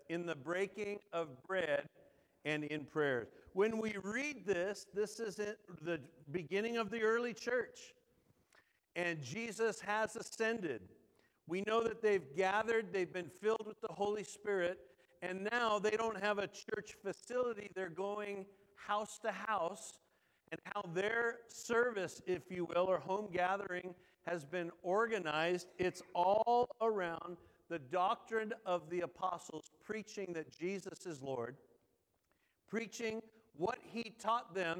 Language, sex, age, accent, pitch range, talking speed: English, male, 50-69, American, 175-220 Hz, 140 wpm